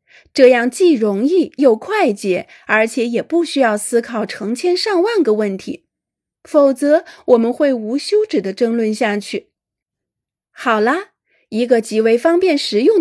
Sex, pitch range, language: female, 220-325 Hz, Chinese